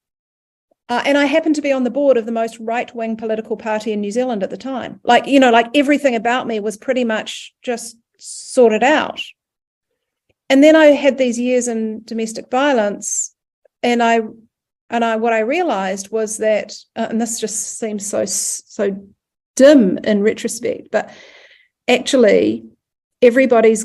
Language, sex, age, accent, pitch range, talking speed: English, female, 40-59, Australian, 220-275 Hz, 165 wpm